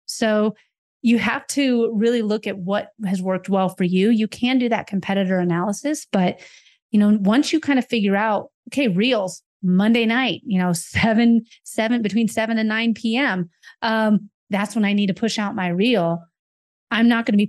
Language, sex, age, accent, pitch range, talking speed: English, female, 30-49, American, 185-235 Hz, 195 wpm